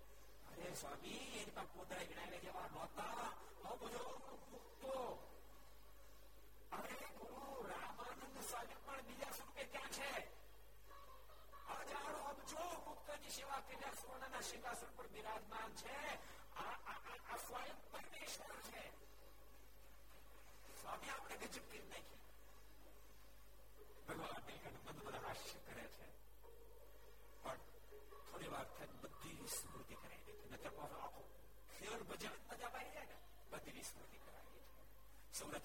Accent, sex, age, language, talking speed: native, male, 60-79, Gujarati, 45 wpm